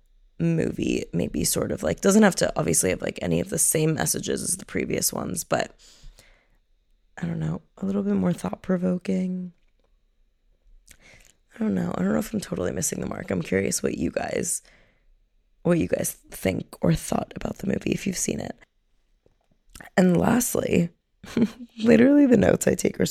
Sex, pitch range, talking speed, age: female, 145-180 Hz, 175 wpm, 20-39